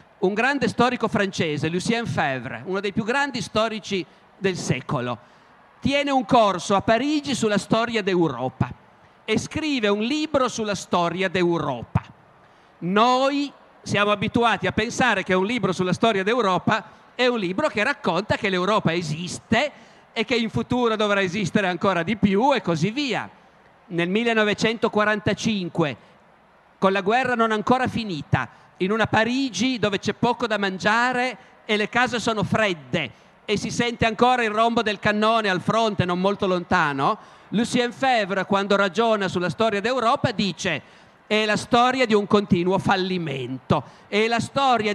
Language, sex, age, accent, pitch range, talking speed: Italian, male, 50-69, native, 190-240 Hz, 150 wpm